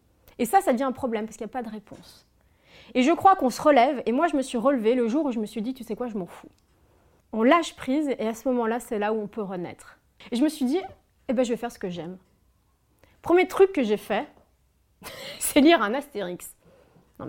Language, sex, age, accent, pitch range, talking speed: French, female, 30-49, French, 195-265 Hz, 255 wpm